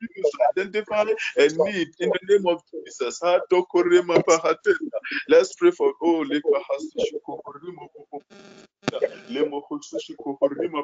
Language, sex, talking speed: English, male, 90 wpm